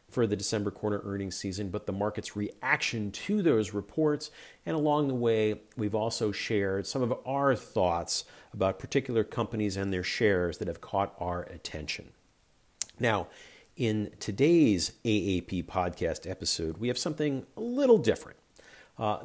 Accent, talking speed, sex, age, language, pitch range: American, 150 wpm, male, 50-69, English, 95-125 Hz